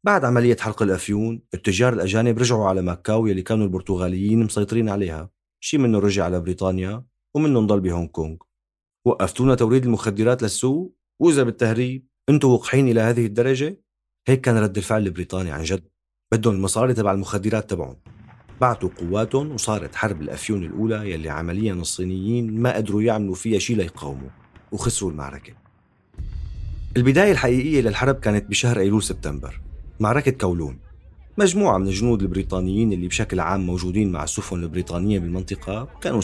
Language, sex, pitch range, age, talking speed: Arabic, male, 90-120 Hz, 40-59, 140 wpm